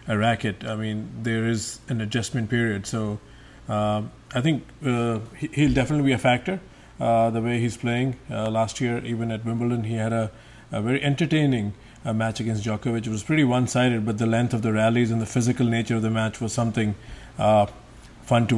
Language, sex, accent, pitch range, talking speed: English, male, Indian, 110-120 Hz, 200 wpm